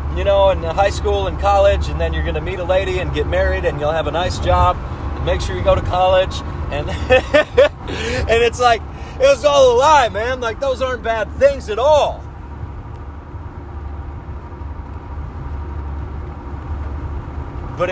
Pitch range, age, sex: 75-95 Hz, 30-49, male